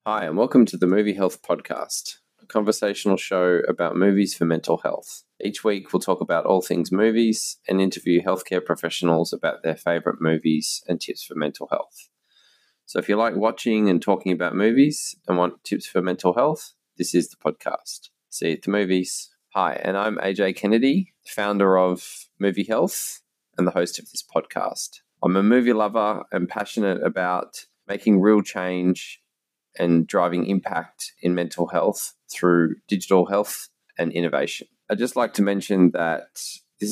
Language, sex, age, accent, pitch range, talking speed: English, male, 20-39, Australian, 90-100 Hz, 170 wpm